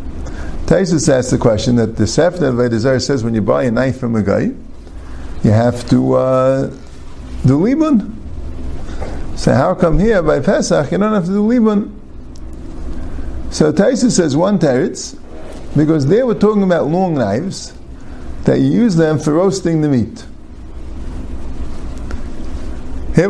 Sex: male